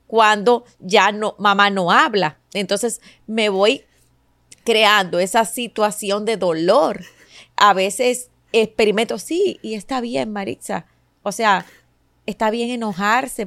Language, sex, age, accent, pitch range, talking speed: Spanish, female, 30-49, American, 185-220 Hz, 120 wpm